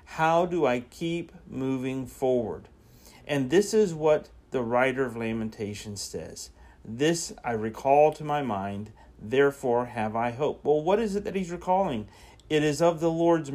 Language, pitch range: English, 110-150 Hz